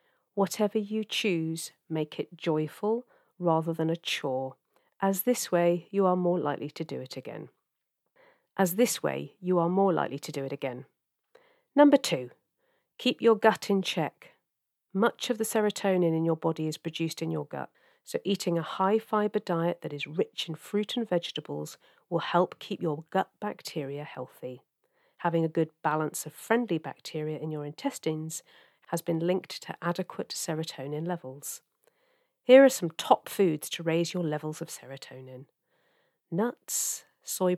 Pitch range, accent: 160-230 Hz, British